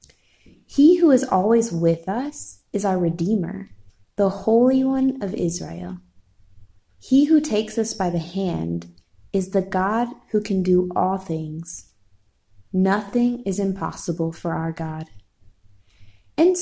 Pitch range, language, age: 155-215 Hz, English, 20-39